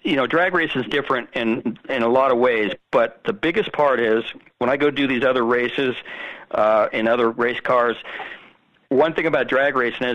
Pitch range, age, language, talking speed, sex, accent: 120-145 Hz, 50-69, English, 205 wpm, male, American